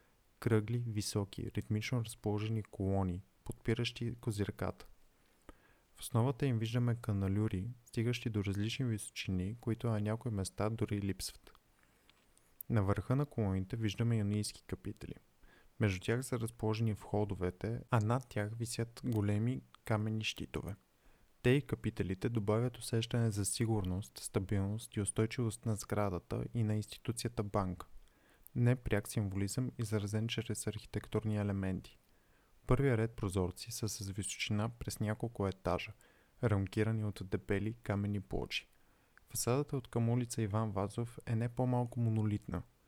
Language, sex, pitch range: Bulgarian, male, 100-120 Hz